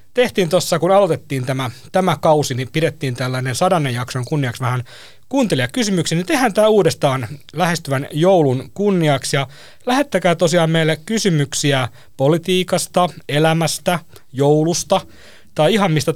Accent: native